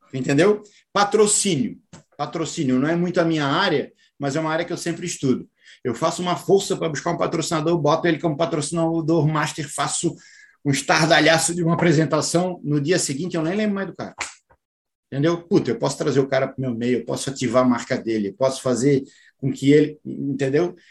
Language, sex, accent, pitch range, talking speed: Portuguese, male, Brazilian, 135-165 Hz, 200 wpm